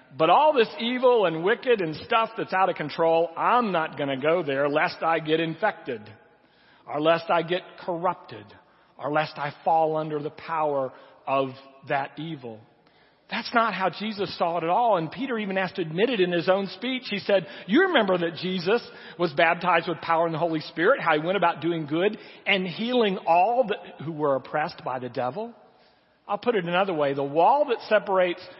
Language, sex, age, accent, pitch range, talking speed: English, male, 40-59, American, 150-195 Hz, 195 wpm